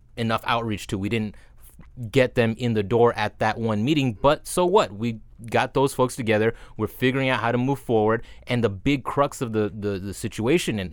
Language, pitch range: English, 110-135 Hz